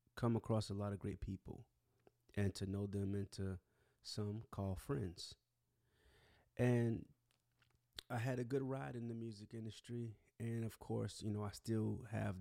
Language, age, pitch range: English, 30-49, 100-120 Hz